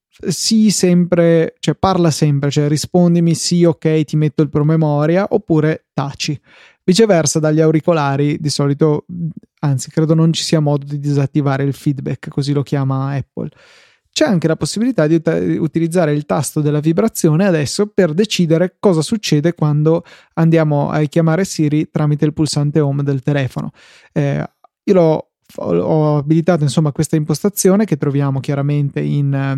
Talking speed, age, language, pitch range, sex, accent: 150 wpm, 20-39, Italian, 145-170 Hz, male, native